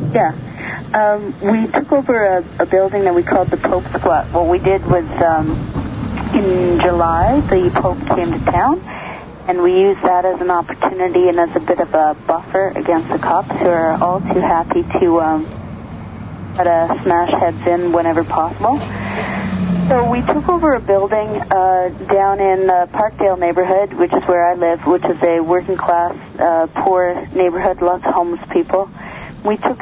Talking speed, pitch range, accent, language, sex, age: 175 wpm, 165-195 Hz, American, English, female, 30-49